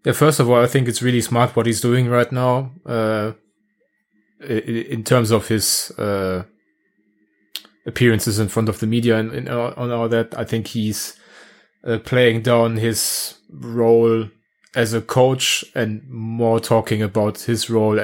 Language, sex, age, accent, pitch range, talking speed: English, male, 20-39, German, 105-120 Hz, 160 wpm